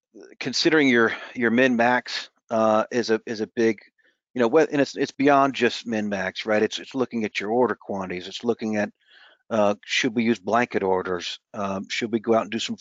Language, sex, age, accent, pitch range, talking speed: English, male, 50-69, American, 105-120 Hz, 200 wpm